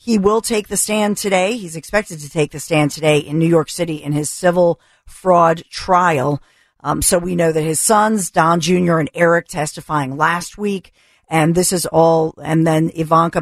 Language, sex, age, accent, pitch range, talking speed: English, female, 50-69, American, 160-190 Hz, 190 wpm